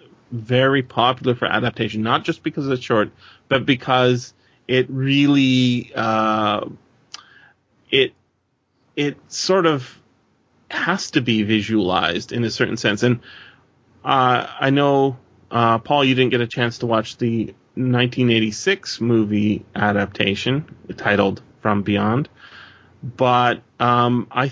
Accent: American